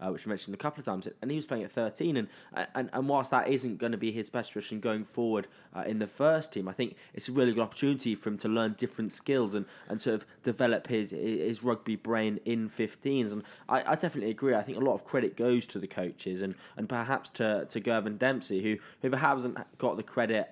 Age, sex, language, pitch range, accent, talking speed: 10-29, male, English, 105-125 Hz, British, 250 wpm